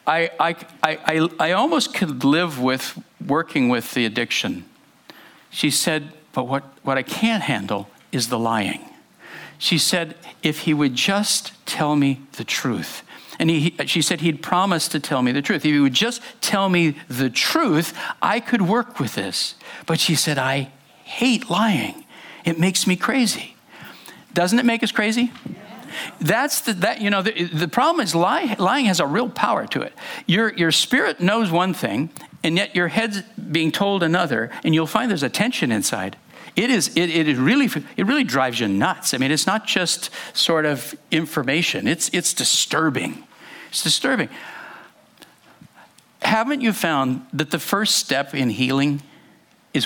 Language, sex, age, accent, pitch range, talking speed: English, male, 60-79, American, 140-210 Hz, 170 wpm